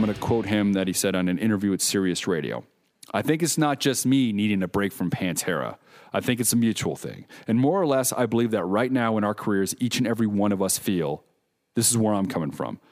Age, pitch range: 40-59, 95-120 Hz